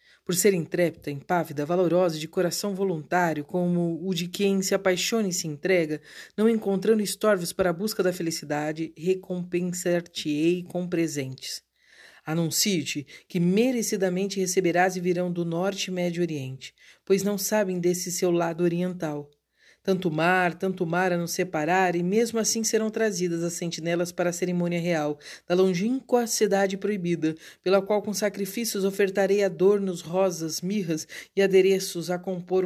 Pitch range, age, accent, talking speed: 170-195 Hz, 50-69, Brazilian, 150 wpm